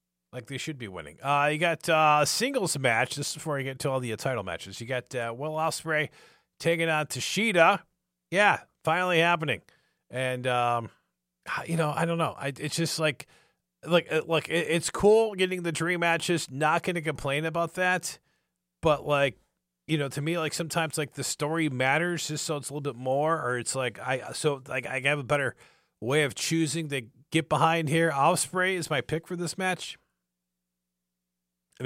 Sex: male